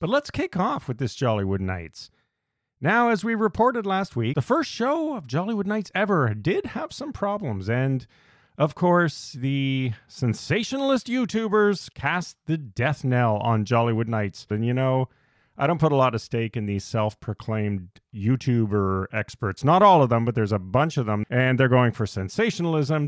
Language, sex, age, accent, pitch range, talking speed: English, male, 40-59, American, 115-180 Hz, 175 wpm